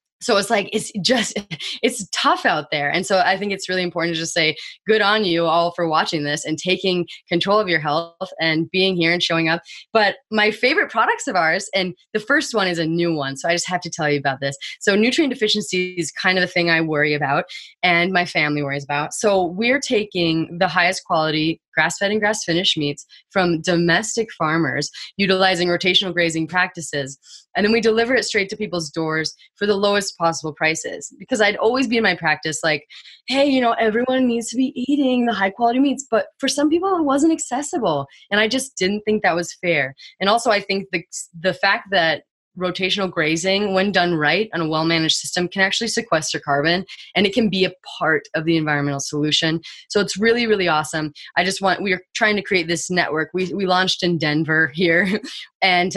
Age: 20-39